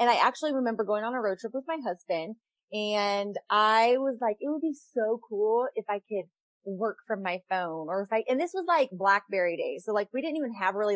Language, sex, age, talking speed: English, female, 30-49, 240 wpm